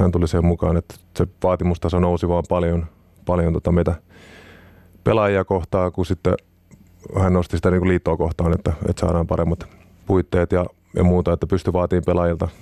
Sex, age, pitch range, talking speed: male, 30-49, 85-95 Hz, 155 wpm